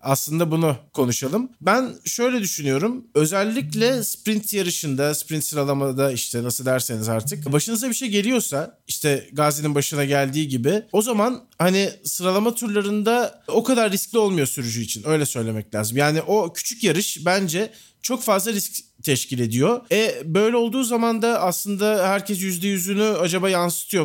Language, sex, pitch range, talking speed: Turkish, male, 150-205 Hz, 145 wpm